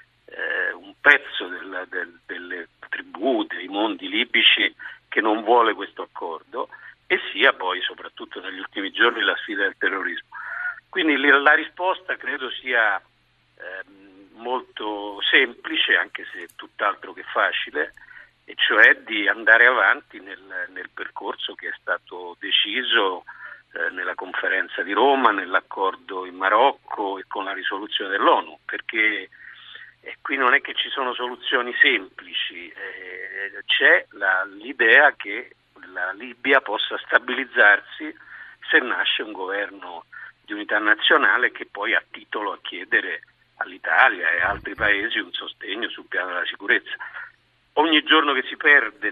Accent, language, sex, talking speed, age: native, Italian, male, 135 wpm, 50-69